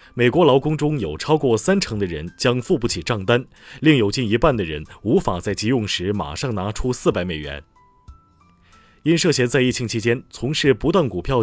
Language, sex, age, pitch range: Chinese, male, 30-49, 100-135 Hz